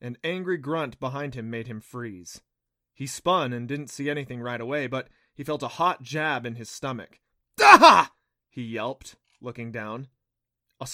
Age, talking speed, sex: 20-39, 170 wpm, male